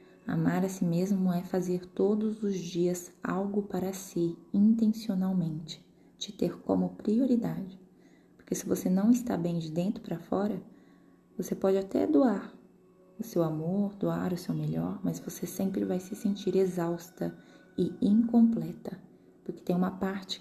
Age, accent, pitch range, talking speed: 20-39, Brazilian, 170-195 Hz, 150 wpm